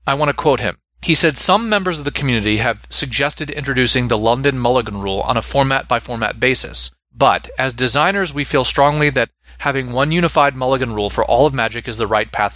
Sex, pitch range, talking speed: male, 115-150 Hz, 205 wpm